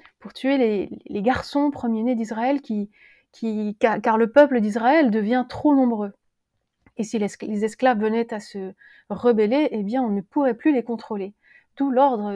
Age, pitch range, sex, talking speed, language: 30-49, 215-280 Hz, female, 165 wpm, French